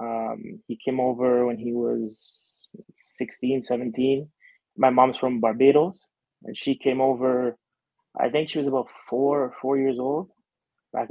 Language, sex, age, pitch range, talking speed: English, male, 20-39, 125-140 Hz, 150 wpm